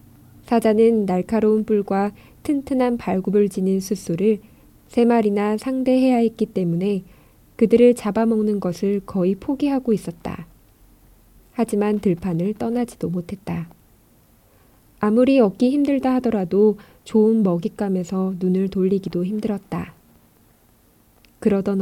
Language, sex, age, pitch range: Korean, female, 20-39, 185-230 Hz